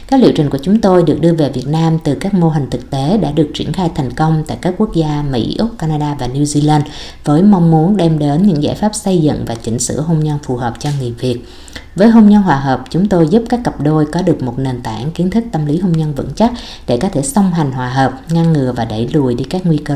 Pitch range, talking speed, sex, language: 145-185 Hz, 280 wpm, female, Vietnamese